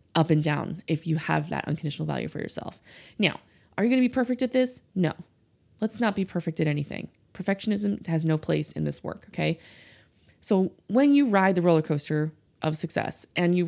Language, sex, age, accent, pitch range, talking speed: English, female, 20-39, American, 155-200 Hz, 200 wpm